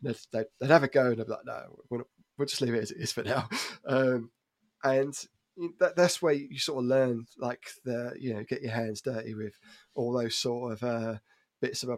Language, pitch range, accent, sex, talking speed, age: English, 115-130 Hz, British, male, 220 wpm, 20-39